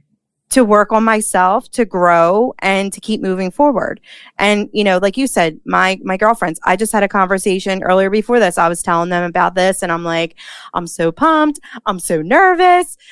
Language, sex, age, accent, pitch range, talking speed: English, female, 30-49, American, 180-225 Hz, 195 wpm